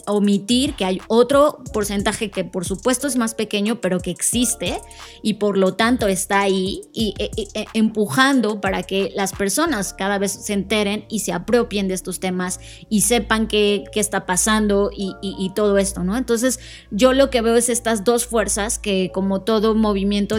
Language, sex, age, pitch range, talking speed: Spanish, female, 20-39, 195-235 Hz, 185 wpm